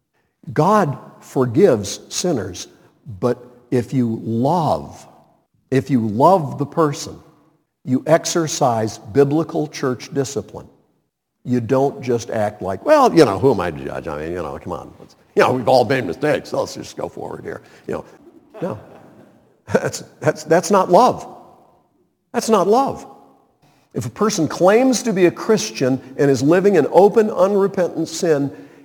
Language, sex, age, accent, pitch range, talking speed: English, male, 50-69, American, 130-170 Hz, 150 wpm